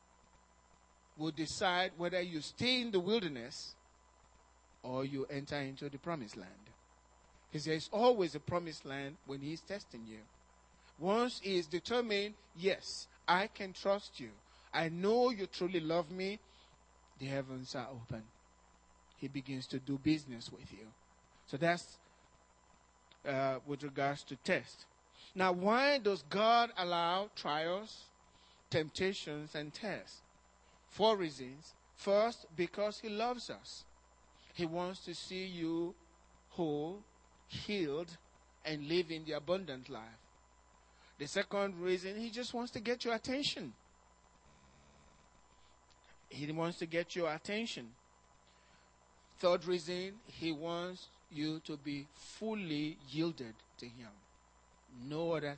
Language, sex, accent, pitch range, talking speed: English, male, Nigerian, 125-185 Hz, 125 wpm